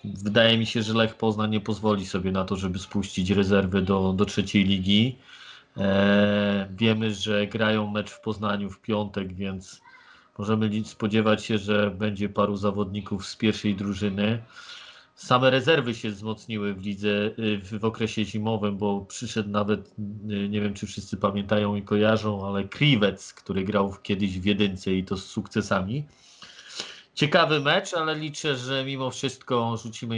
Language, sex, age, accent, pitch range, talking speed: Polish, male, 40-59, native, 100-115 Hz, 155 wpm